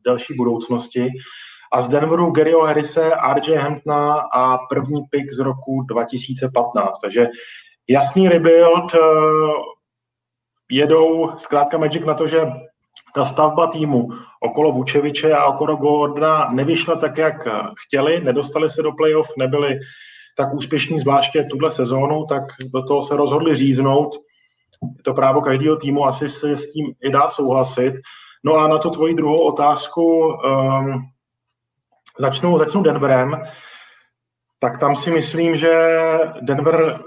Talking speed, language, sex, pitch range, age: 130 wpm, Czech, male, 130-155 Hz, 20-39